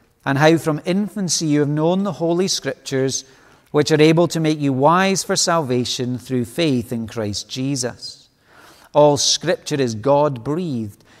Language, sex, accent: English, male, British